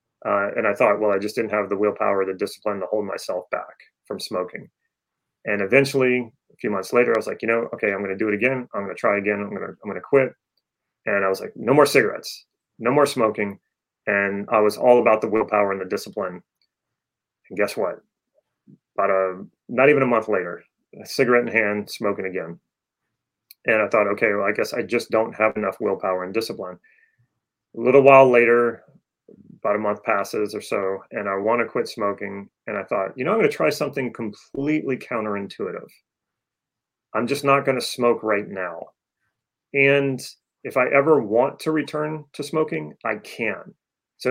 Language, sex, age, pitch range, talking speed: English, male, 30-49, 105-135 Hz, 195 wpm